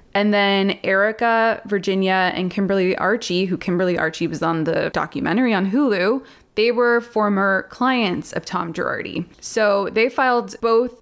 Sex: female